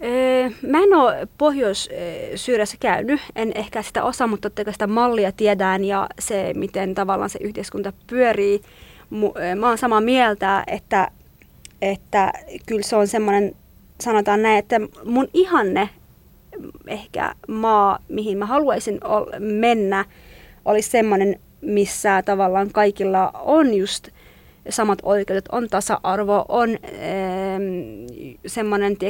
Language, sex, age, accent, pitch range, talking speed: Finnish, female, 30-49, native, 200-250 Hz, 115 wpm